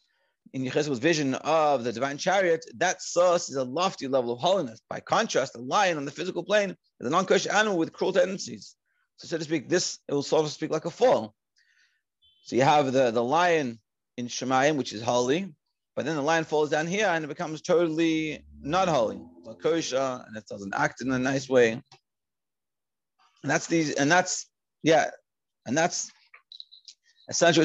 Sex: male